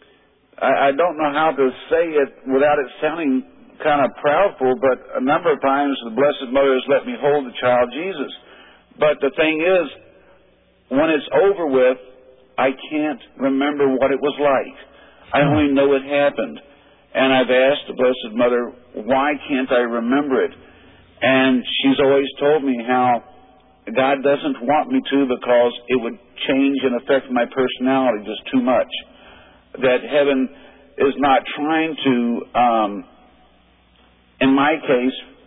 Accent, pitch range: American, 125-145 Hz